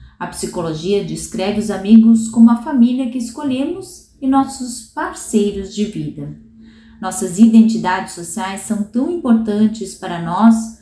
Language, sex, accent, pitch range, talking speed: Portuguese, female, Brazilian, 190-235 Hz, 130 wpm